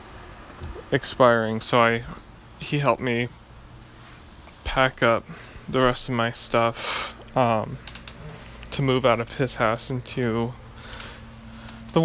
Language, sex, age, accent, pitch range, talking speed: English, male, 20-39, American, 115-130 Hz, 110 wpm